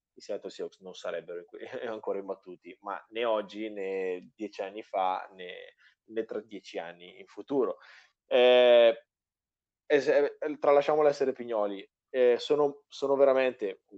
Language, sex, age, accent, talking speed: Italian, male, 20-39, native, 120 wpm